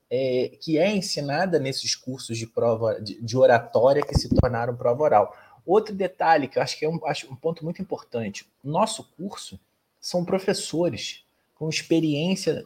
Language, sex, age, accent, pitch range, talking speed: Portuguese, male, 20-39, Brazilian, 130-175 Hz, 170 wpm